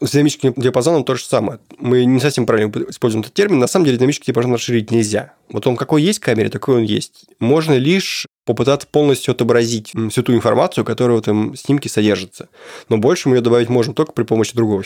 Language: Russian